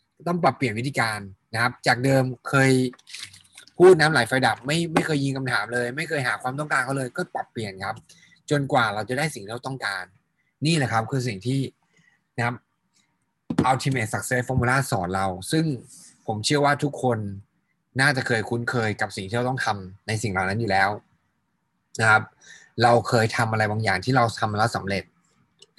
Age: 20-39